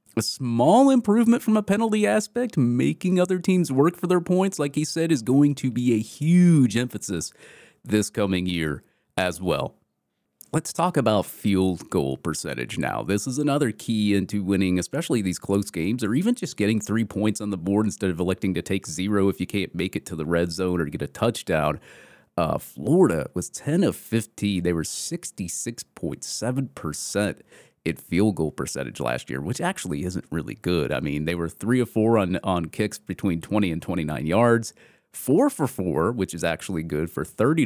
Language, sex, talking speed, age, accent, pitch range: English, male, 190 wpm, 30-49, American, 90-125 Hz